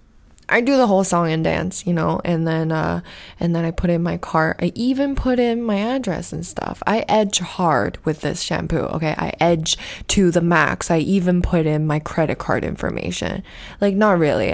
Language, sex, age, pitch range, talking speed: English, female, 20-39, 150-185 Hz, 205 wpm